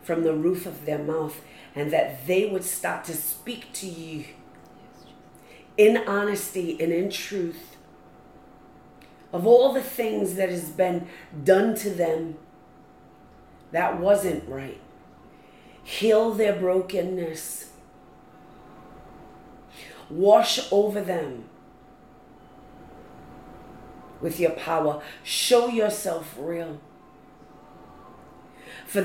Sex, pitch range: female, 155-190 Hz